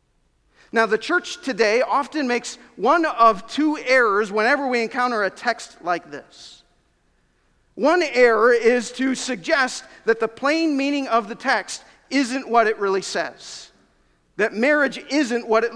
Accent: American